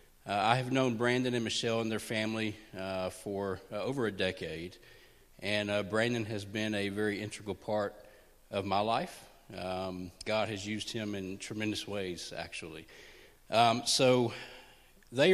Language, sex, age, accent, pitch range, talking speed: English, male, 40-59, American, 105-125 Hz, 155 wpm